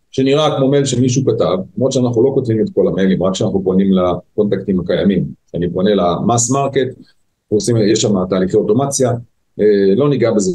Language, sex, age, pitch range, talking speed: Hebrew, male, 40-59, 110-145 Hz, 160 wpm